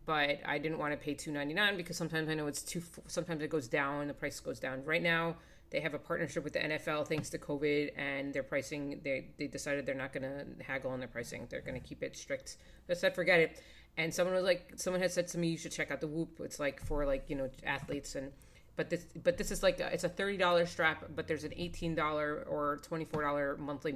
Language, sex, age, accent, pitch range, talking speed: English, female, 30-49, American, 140-165 Hz, 250 wpm